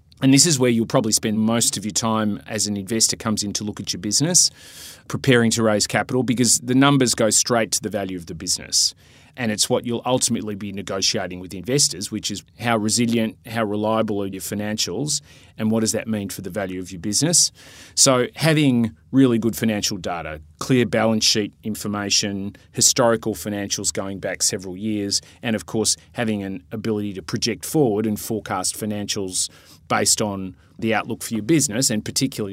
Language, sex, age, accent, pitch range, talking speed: English, male, 30-49, Australian, 100-120 Hz, 190 wpm